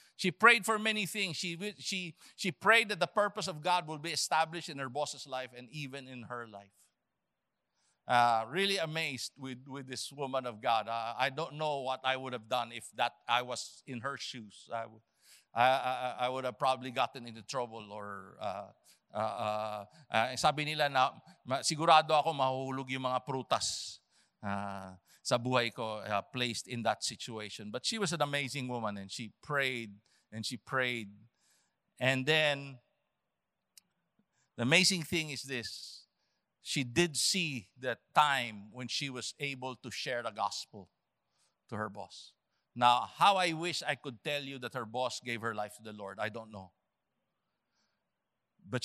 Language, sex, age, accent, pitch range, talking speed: English, male, 50-69, Filipino, 120-155 Hz, 165 wpm